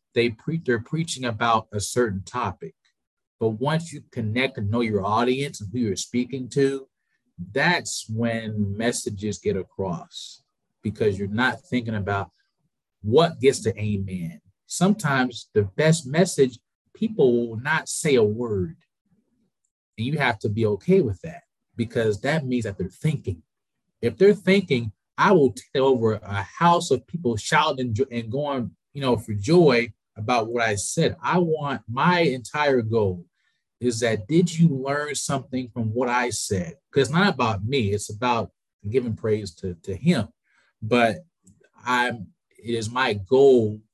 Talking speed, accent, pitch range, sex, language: 155 wpm, American, 105-135 Hz, male, English